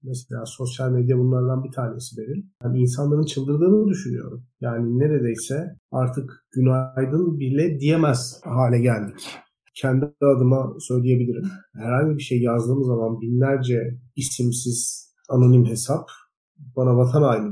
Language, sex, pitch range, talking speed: Turkish, male, 125-160 Hz, 115 wpm